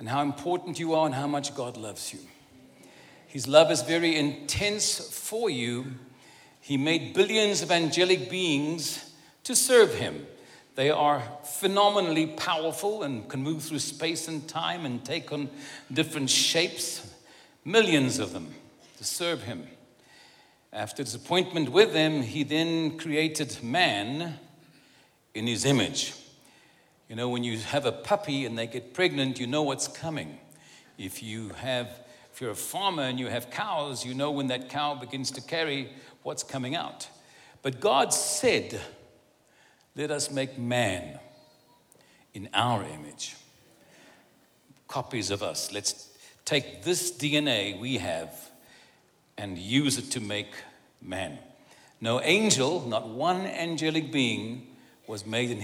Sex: male